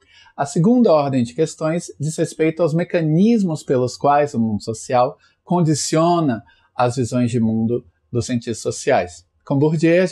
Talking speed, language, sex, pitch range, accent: 140 wpm, Portuguese, male, 115-145 Hz, Brazilian